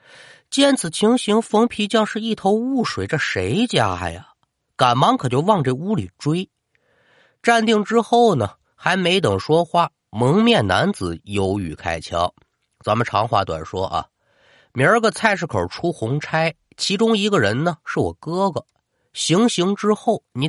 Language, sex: Chinese, male